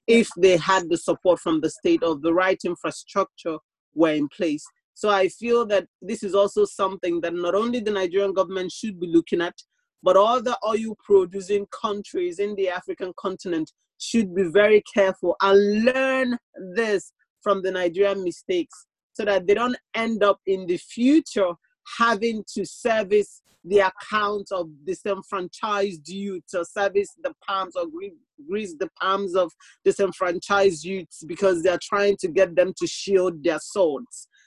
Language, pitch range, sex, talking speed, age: English, 180-215 Hz, male, 160 wpm, 30-49